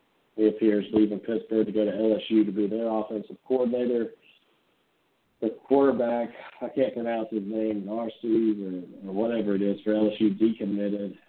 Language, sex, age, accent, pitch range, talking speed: English, male, 50-69, American, 100-110 Hz, 155 wpm